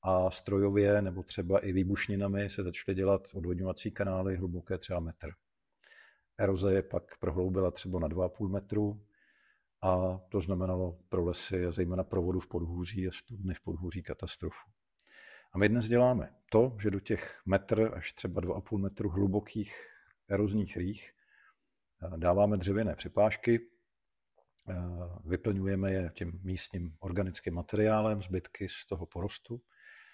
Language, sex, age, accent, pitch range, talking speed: Czech, male, 50-69, native, 90-100 Hz, 130 wpm